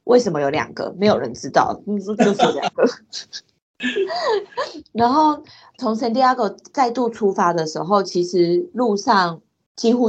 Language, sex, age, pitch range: Chinese, female, 30-49, 175-235 Hz